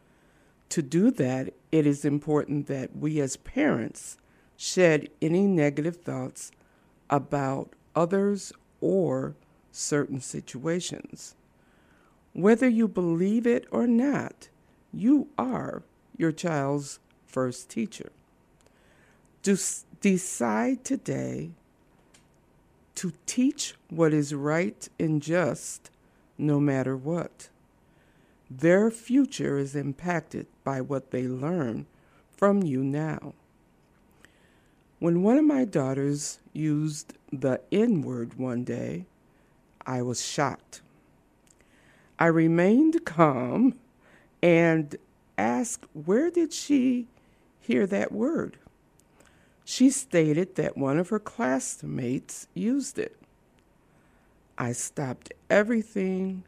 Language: English